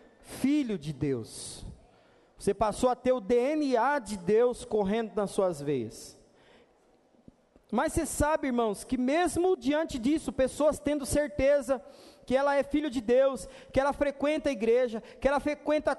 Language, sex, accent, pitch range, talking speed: English, male, Brazilian, 215-280 Hz, 150 wpm